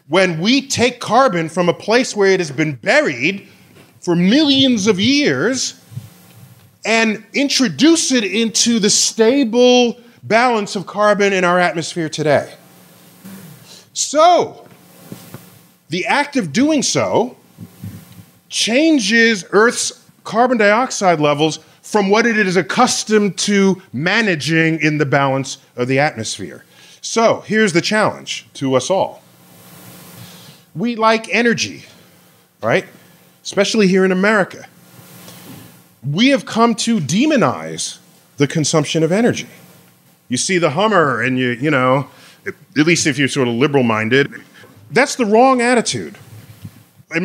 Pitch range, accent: 145-225 Hz, American